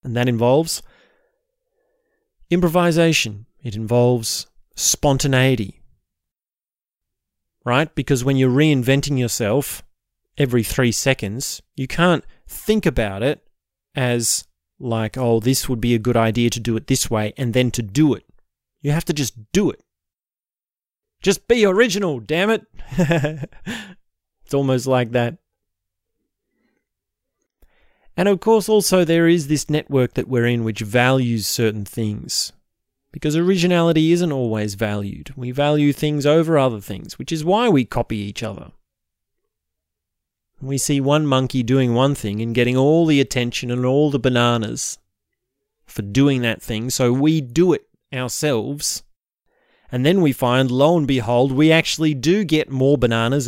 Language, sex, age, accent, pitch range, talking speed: English, male, 30-49, Australian, 115-155 Hz, 140 wpm